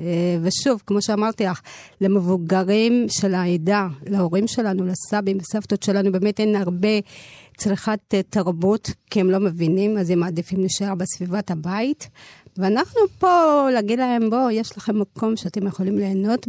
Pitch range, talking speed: 190-220 Hz, 140 wpm